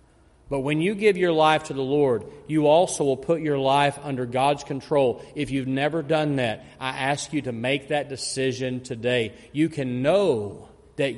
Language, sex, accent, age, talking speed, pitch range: English, male, American, 40-59, 190 wpm, 130-165 Hz